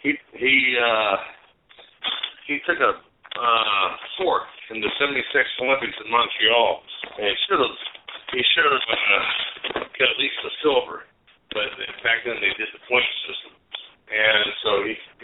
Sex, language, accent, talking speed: male, English, American, 145 wpm